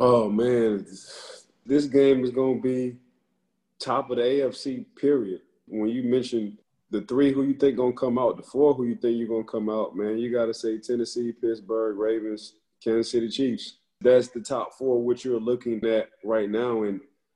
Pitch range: 110-130 Hz